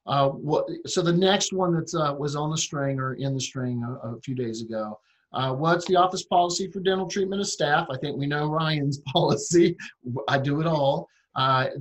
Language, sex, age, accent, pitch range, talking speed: English, male, 50-69, American, 130-170 Hz, 215 wpm